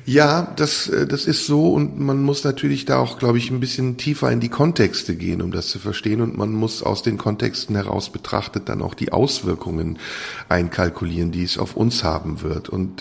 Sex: male